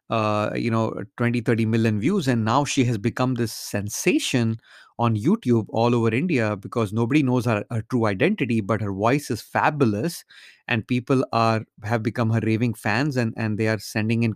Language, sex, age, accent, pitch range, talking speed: English, male, 30-49, Indian, 110-135 Hz, 190 wpm